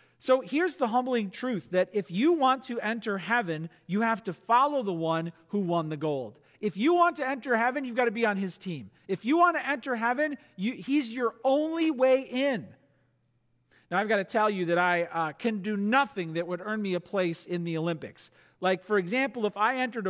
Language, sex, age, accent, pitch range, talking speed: English, male, 50-69, American, 185-270 Hz, 220 wpm